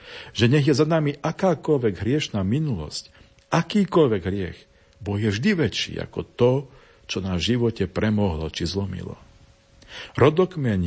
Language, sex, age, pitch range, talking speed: Slovak, male, 50-69, 90-130 Hz, 125 wpm